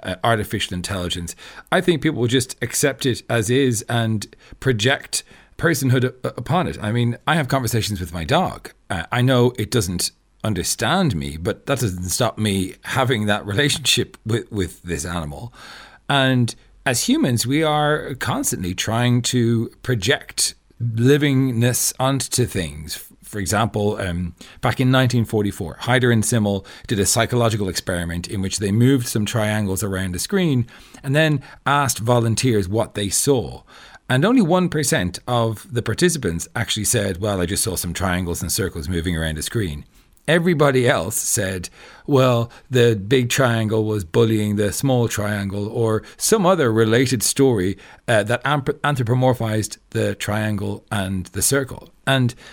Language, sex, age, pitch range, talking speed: English, male, 40-59, 100-130 Hz, 150 wpm